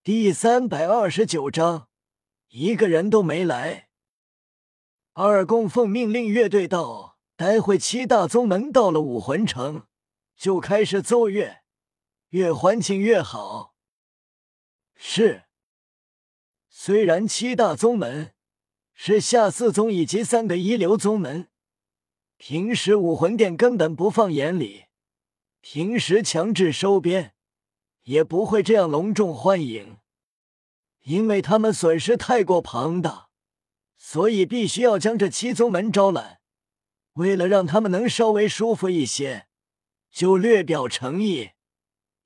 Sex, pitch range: male, 150-215 Hz